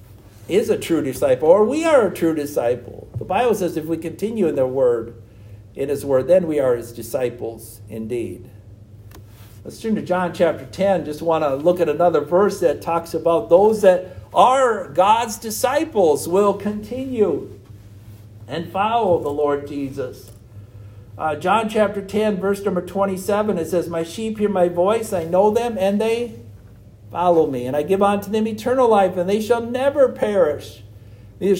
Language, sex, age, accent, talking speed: English, male, 60-79, American, 170 wpm